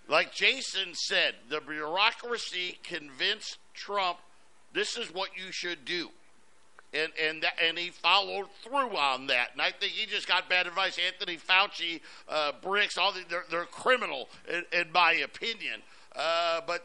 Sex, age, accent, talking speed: male, 50-69, American, 155 wpm